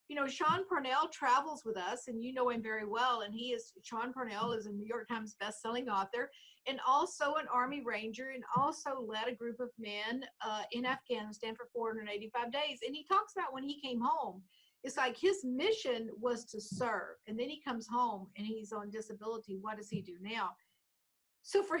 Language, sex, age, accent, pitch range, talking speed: English, female, 50-69, American, 215-275 Hz, 205 wpm